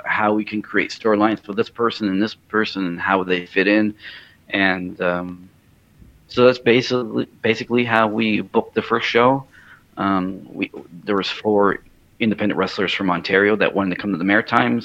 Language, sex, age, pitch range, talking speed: English, male, 40-59, 95-110 Hz, 180 wpm